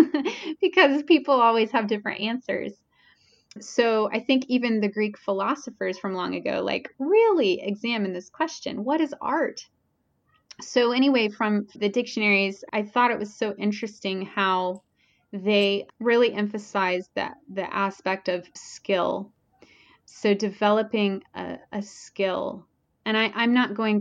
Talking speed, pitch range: 130 wpm, 195-230 Hz